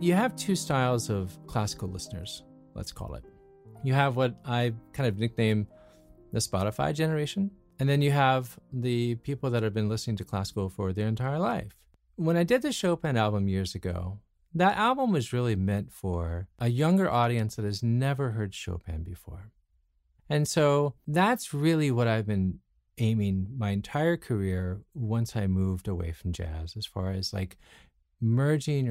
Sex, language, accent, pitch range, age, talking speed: male, English, American, 100-150 Hz, 40-59, 170 wpm